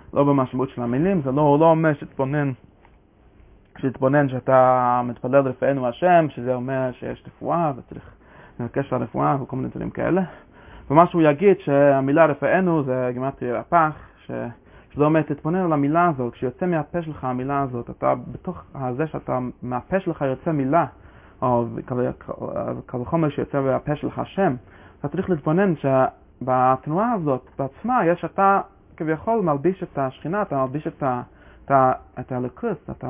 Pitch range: 125-155 Hz